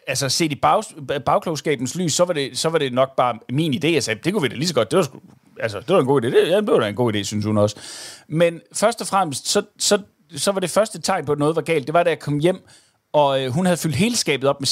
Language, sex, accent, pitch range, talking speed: Danish, male, native, 140-180 Hz, 300 wpm